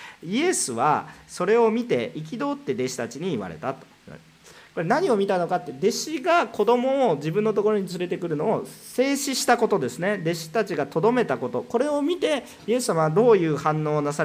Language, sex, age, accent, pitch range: Japanese, male, 40-59, native, 145-240 Hz